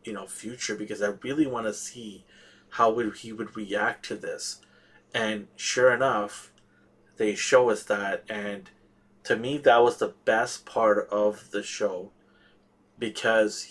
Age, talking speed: 30-49, 155 wpm